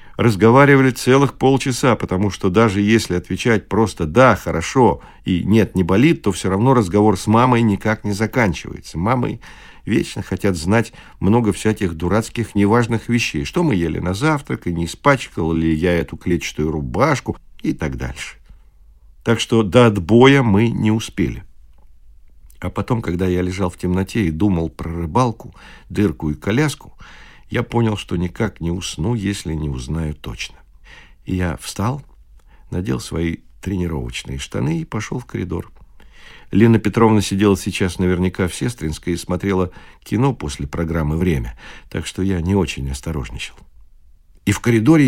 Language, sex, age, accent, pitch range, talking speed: Russian, male, 50-69, native, 80-115 Hz, 150 wpm